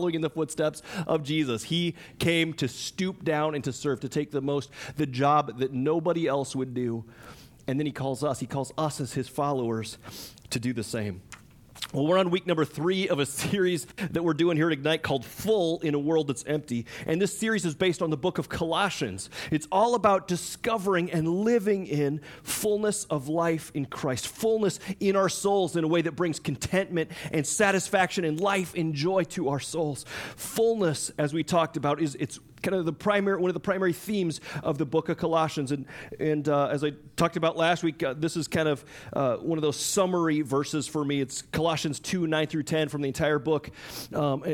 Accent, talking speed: American, 210 wpm